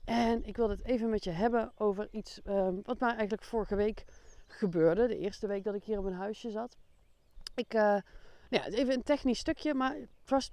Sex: female